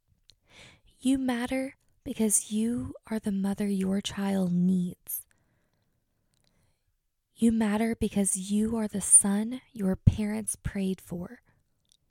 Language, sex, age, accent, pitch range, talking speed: English, female, 10-29, American, 190-230 Hz, 105 wpm